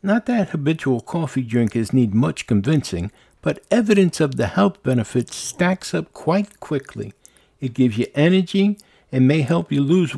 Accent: American